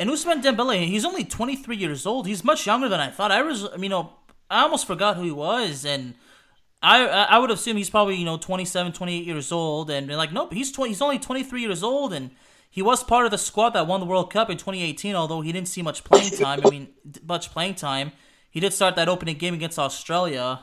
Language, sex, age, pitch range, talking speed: English, male, 20-39, 165-210 Hz, 260 wpm